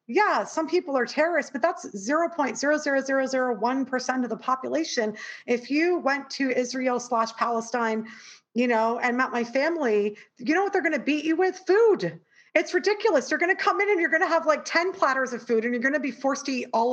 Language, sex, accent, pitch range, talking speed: English, female, American, 225-310 Hz, 215 wpm